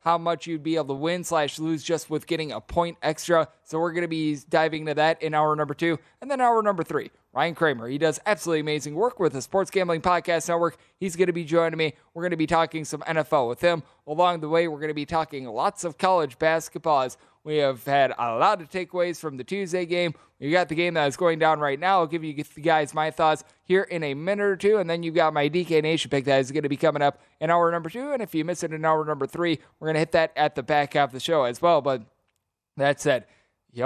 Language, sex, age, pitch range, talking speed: English, male, 20-39, 145-170 Hz, 270 wpm